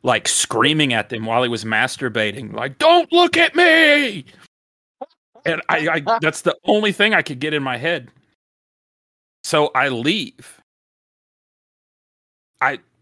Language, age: English, 30-49